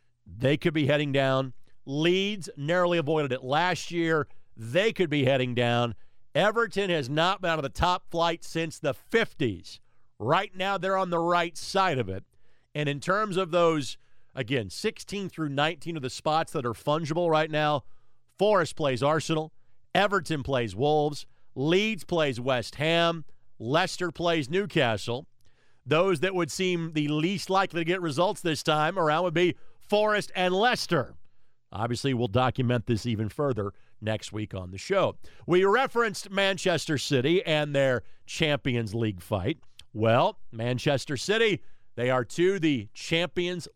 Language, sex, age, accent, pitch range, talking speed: English, male, 50-69, American, 125-180 Hz, 155 wpm